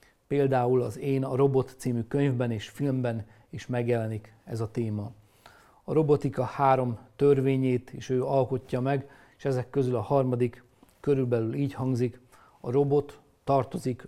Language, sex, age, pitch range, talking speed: Hungarian, male, 40-59, 115-135 Hz, 140 wpm